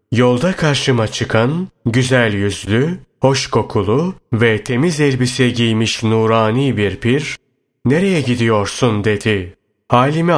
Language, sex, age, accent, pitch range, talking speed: Turkish, male, 30-49, native, 105-135 Hz, 105 wpm